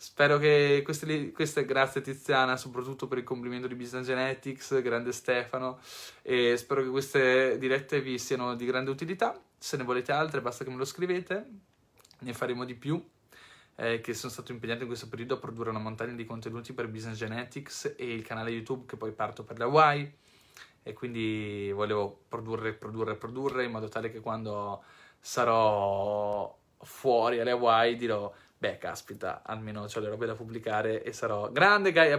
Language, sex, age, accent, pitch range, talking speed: Italian, male, 20-39, native, 115-135 Hz, 170 wpm